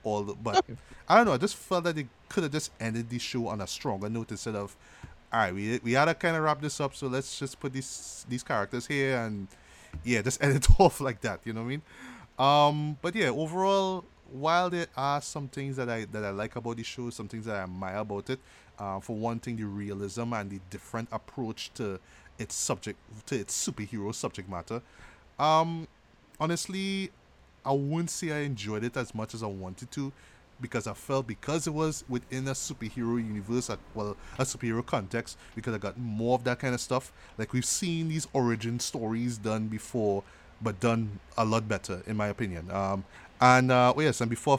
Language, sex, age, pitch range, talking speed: English, male, 20-39, 105-135 Hz, 210 wpm